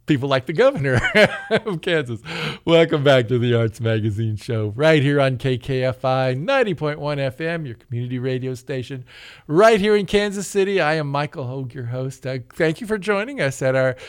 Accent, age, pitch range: American, 50-69, 125-165 Hz